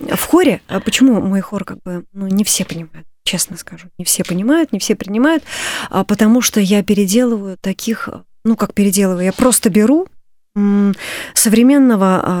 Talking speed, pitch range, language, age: 150 wpm, 190-245 Hz, Russian, 20-39